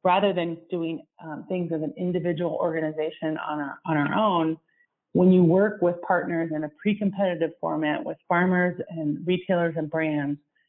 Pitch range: 165-205 Hz